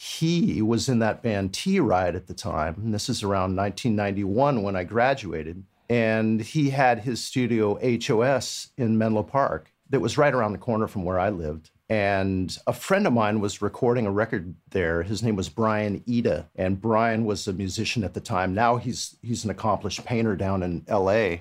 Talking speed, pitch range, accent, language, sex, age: 190 wpm, 95-120 Hz, American, English, male, 50-69